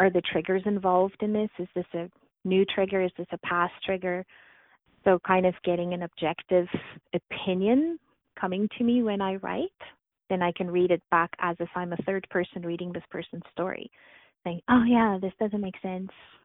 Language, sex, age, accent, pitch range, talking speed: English, female, 30-49, American, 175-195 Hz, 190 wpm